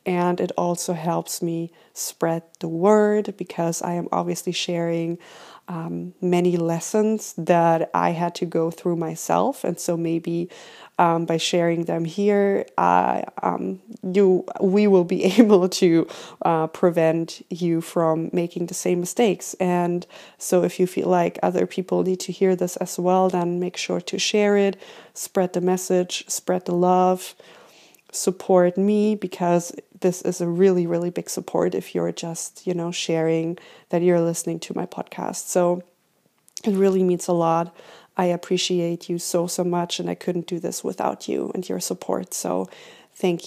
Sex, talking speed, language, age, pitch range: female, 160 wpm, English, 20-39, 170-185 Hz